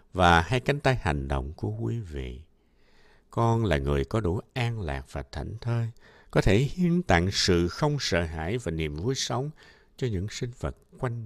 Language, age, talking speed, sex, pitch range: Vietnamese, 60-79, 190 wpm, male, 80-120 Hz